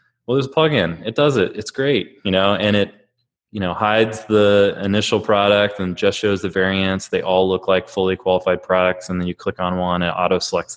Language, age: English, 20-39